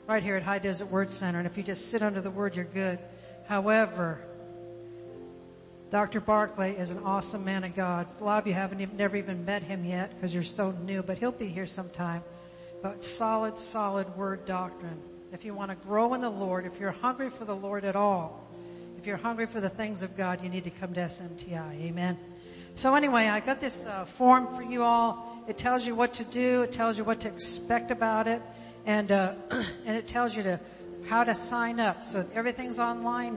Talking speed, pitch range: 215 wpm, 180-225 Hz